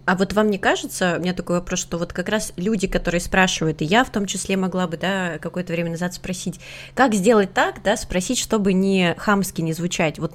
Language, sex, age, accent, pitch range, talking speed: Russian, female, 20-39, native, 165-195 Hz, 225 wpm